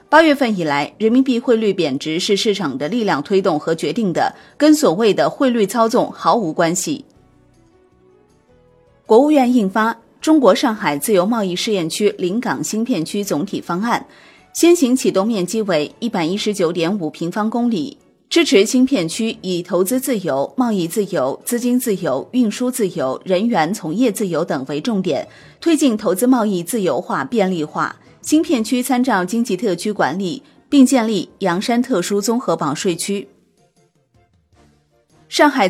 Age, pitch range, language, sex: 30-49, 180-250 Hz, Chinese, female